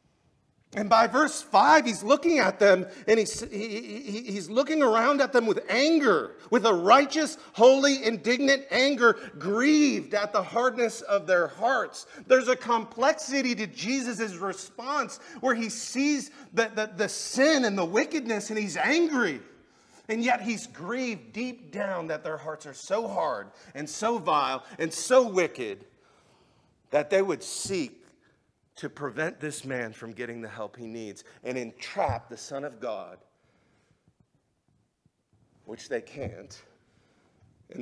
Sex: male